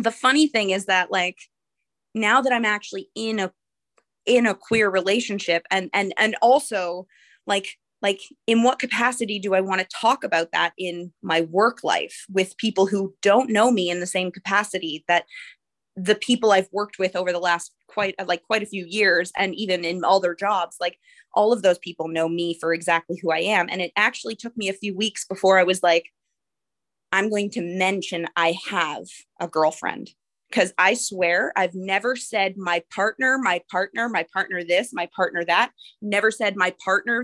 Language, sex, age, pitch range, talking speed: English, female, 20-39, 180-245 Hz, 190 wpm